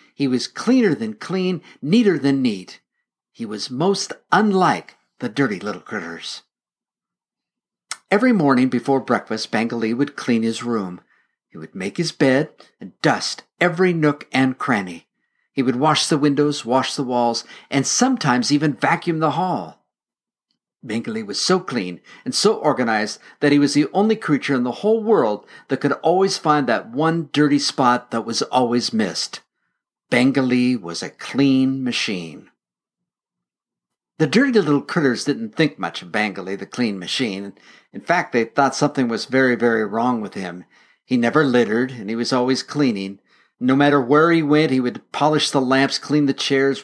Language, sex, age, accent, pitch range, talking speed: English, male, 50-69, American, 125-160 Hz, 165 wpm